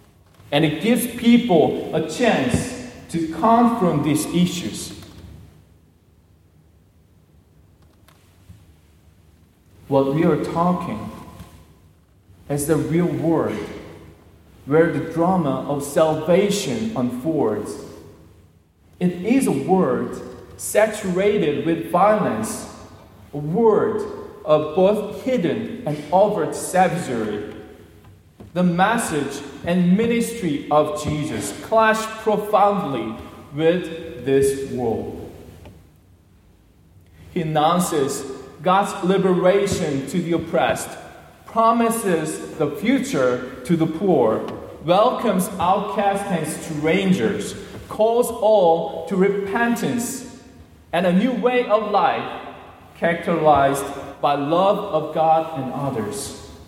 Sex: male